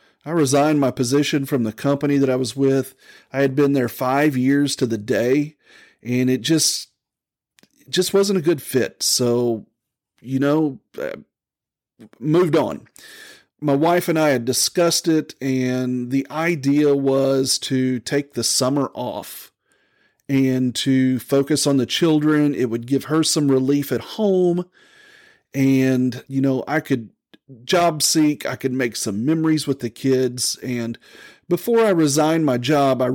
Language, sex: English, male